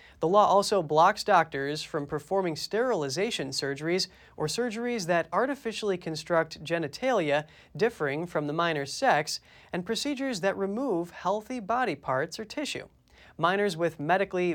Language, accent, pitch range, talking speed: English, American, 160-225 Hz, 130 wpm